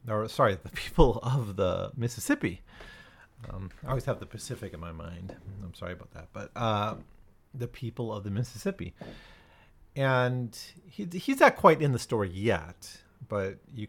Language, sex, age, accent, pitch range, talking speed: English, male, 40-59, American, 90-130 Hz, 165 wpm